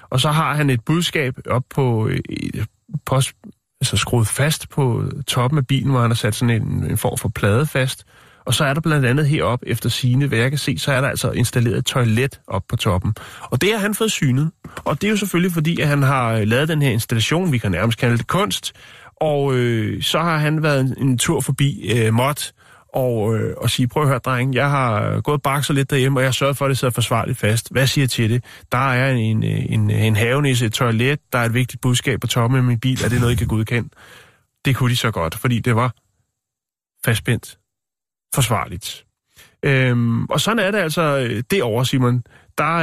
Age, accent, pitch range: 30-49, native, 120-145 Hz